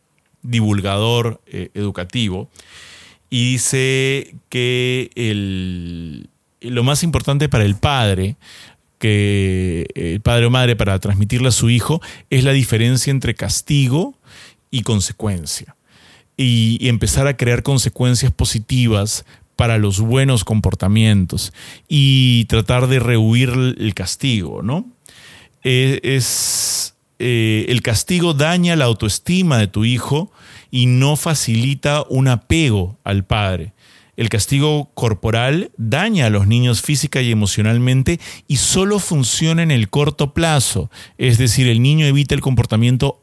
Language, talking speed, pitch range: Spanish, 125 wpm, 105-135 Hz